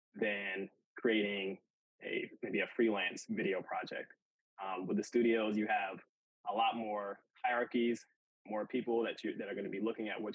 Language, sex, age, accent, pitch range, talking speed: English, male, 20-39, American, 105-130 Hz, 170 wpm